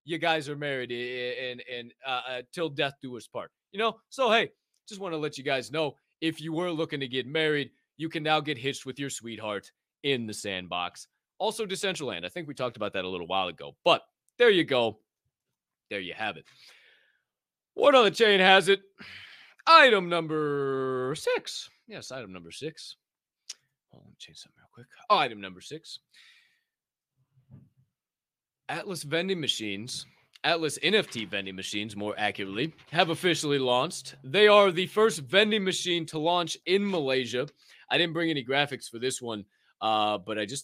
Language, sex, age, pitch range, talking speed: English, male, 30-49, 115-165 Hz, 175 wpm